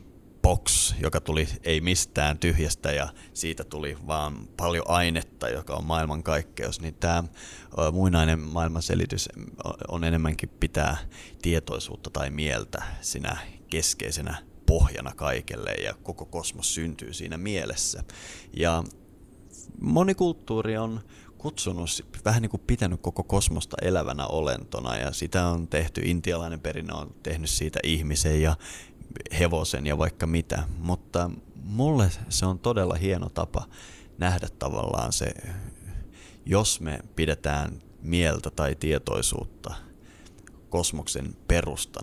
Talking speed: 115 wpm